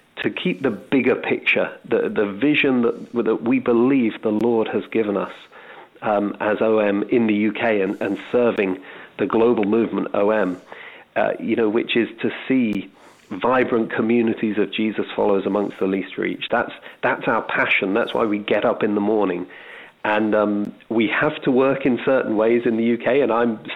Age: 40-59